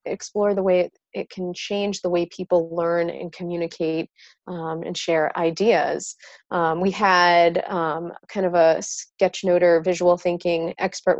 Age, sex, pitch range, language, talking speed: 30-49, female, 170-190 Hz, English, 150 wpm